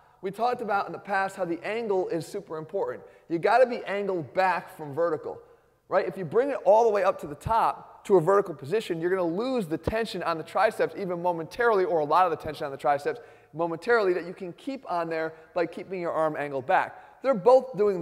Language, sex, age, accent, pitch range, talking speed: English, male, 30-49, American, 170-215 Hz, 240 wpm